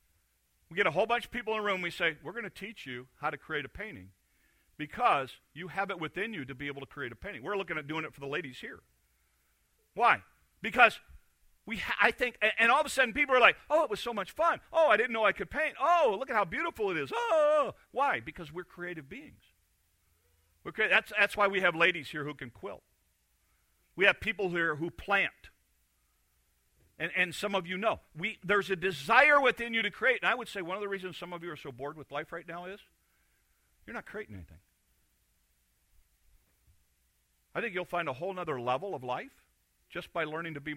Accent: American